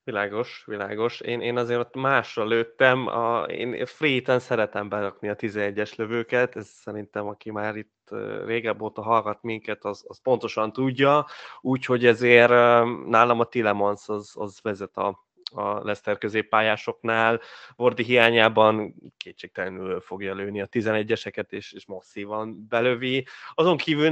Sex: male